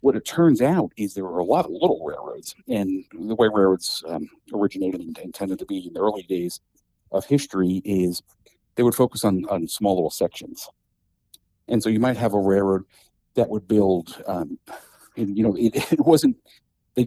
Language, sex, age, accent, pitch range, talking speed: English, male, 50-69, American, 95-115 Hz, 195 wpm